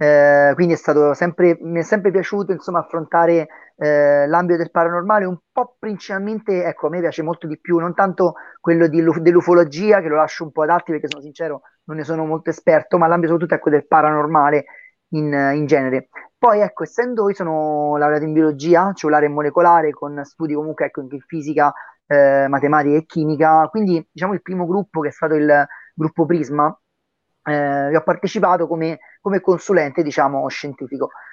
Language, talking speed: English, 185 wpm